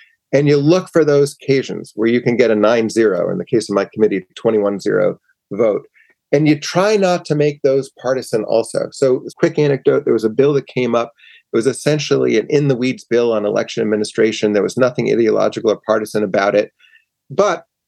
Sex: male